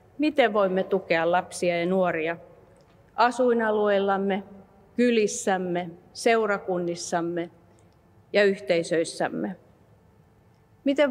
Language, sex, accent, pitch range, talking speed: Finnish, female, native, 165-230 Hz, 65 wpm